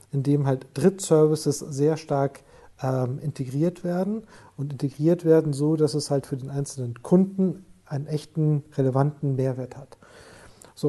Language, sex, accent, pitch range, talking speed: German, male, German, 140-155 Hz, 145 wpm